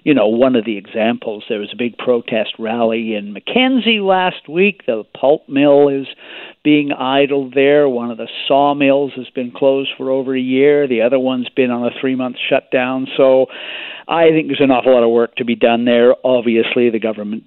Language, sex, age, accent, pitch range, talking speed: English, male, 50-69, American, 120-150 Hz, 200 wpm